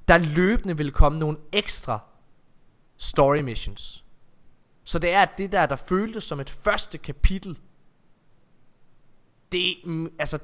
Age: 20-39